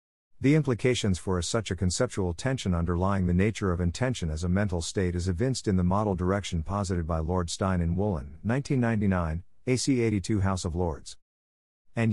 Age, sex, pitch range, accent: 50-69, male, 90-110 Hz, American